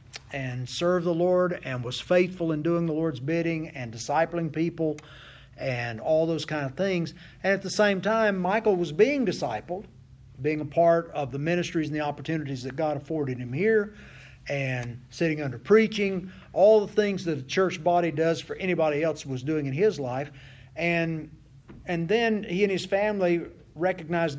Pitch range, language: 145-180 Hz, English